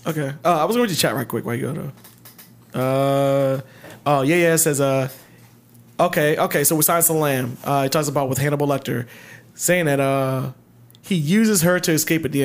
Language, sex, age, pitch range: English, male, 20-39, 135-170 Hz